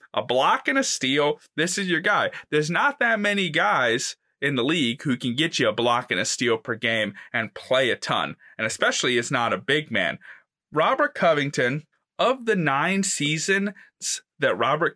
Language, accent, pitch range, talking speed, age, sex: English, American, 145-220 Hz, 190 wpm, 20-39, male